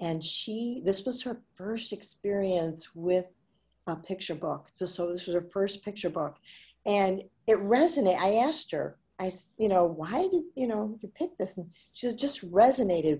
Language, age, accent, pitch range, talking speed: English, 50-69, American, 170-230 Hz, 175 wpm